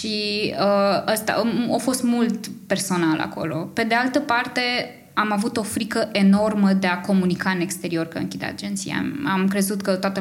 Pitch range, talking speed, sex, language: 170-215 Hz, 170 wpm, female, Romanian